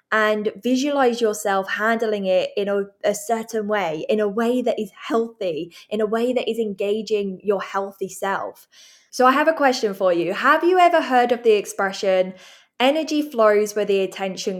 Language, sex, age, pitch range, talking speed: English, female, 10-29, 200-260 Hz, 180 wpm